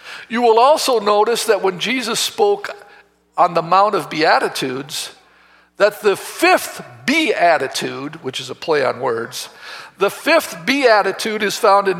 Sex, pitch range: male, 185-240 Hz